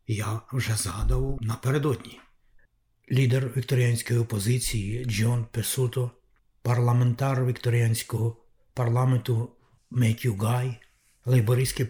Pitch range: 115-130 Hz